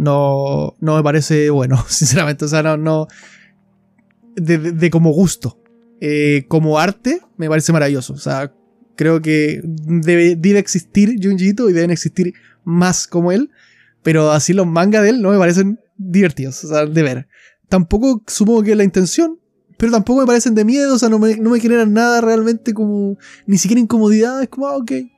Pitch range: 150-205 Hz